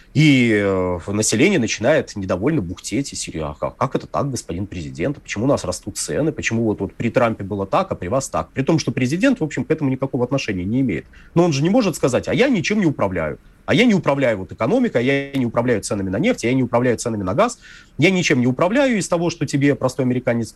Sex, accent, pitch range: male, native, 110-155 Hz